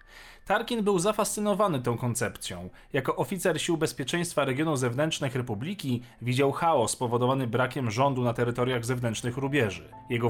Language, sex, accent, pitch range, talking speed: Polish, male, native, 120-170 Hz, 130 wpm